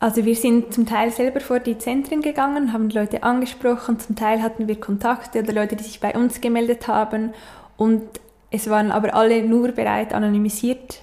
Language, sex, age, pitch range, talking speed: German, female, 10-29, 205-230 Hz, 185 wpm